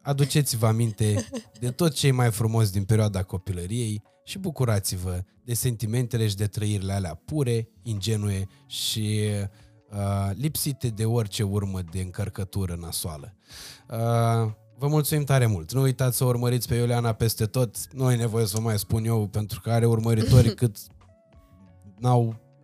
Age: 20-39